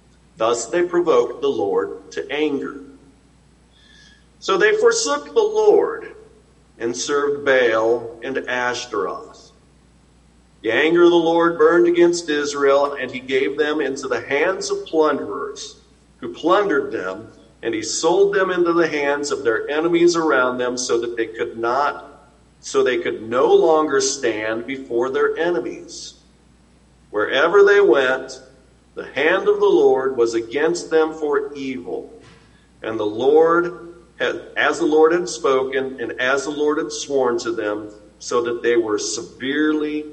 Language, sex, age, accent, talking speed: English, male, 50-69, American, 145 wpm